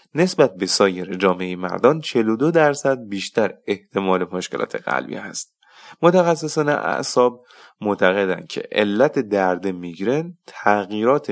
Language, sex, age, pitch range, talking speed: Persian, male, 30-49, 95-135 Hz, 105 wpm